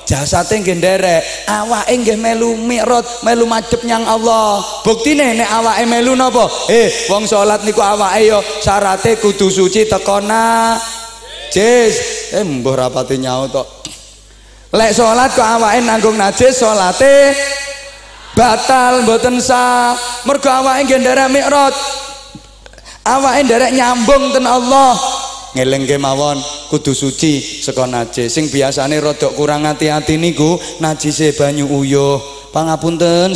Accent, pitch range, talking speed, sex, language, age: native, 140-215 Hz, 125 wpm, male, Indonesian, 20-39